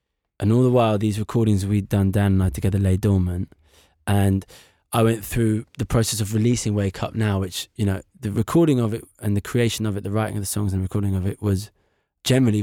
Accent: British